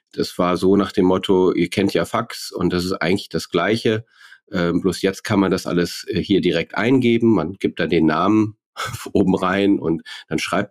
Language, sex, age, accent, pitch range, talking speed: German, male, 40-59, German, 95-115 Hz, 200 wpm